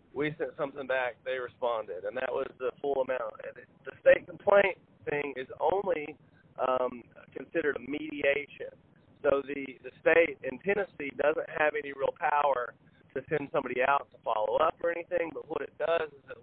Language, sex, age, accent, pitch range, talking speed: English, male, 30-49, American, 130-170 Hz, 175 wpm